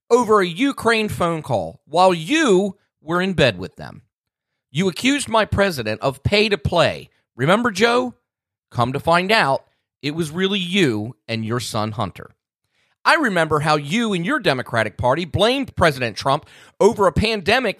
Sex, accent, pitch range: male, American, 120-185 Hz